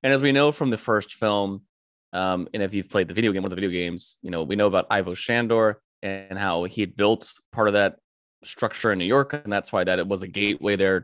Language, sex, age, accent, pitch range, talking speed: English, male, 20-39, American, 95-120 Hz, 265 wpm